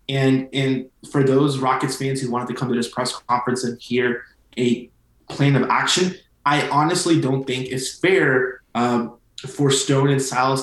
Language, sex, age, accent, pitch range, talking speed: English, male, 20-39, American, 125-135 Hz, 175 wpm